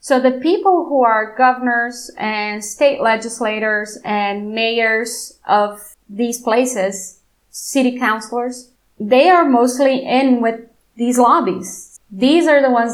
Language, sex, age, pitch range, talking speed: English, female, 20-39, 210-245 Hz, 125 wpm